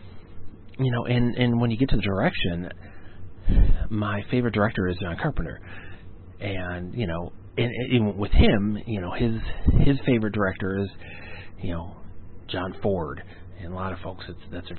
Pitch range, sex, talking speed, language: 90-110 Hz, male, 170 wpm, English